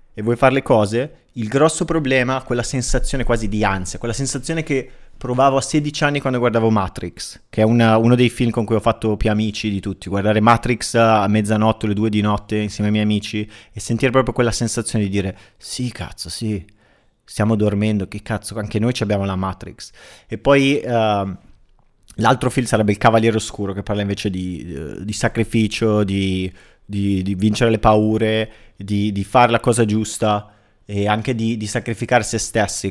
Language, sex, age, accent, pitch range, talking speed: Italian, male, 30-49, native, 105-120 Hz, 190 wpm